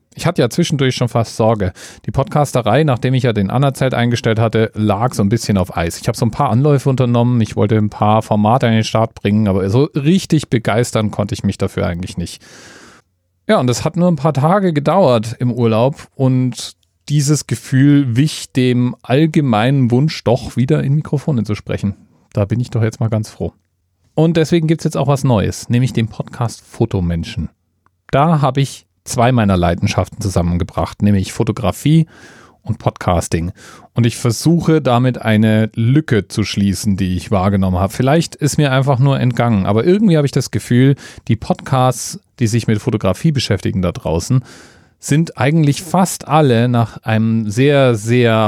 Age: 40-59